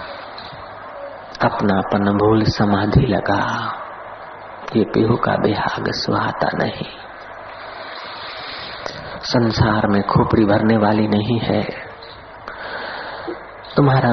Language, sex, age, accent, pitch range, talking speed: Hindi, male, 50-69, native, 110-130 Hz, 75 wpm